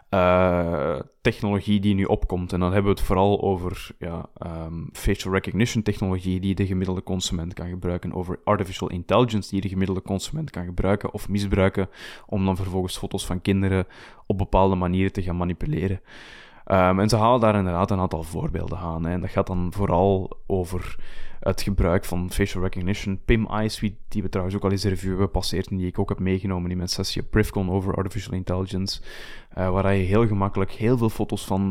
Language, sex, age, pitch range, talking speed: Dutch, male, 20-39, 90-100 Hz, 185 wpm